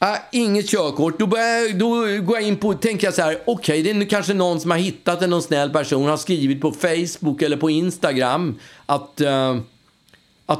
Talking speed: 175 wpm